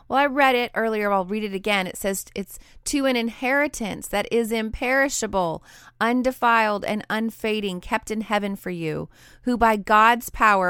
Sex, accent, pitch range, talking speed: female, American, 185-235 Hz, 170 wpm